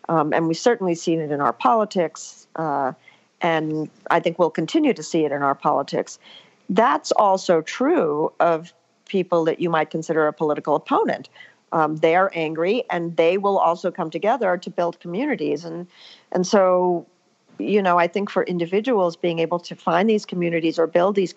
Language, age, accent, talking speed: English, 50-69, American, 180 wpm